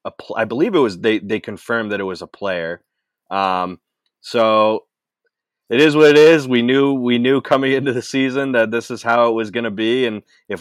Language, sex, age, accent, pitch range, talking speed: English, male, 30-49, American, 110-135 Hz, 225 wpm